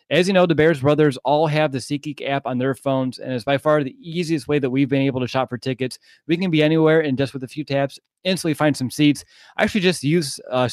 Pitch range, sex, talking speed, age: 130-155 Hz, male, 270 wpm, 20-39